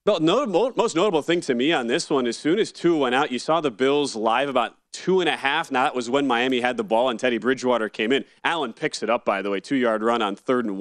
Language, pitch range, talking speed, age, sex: English, 125-155 Hz, 280 wpm, 30-49, male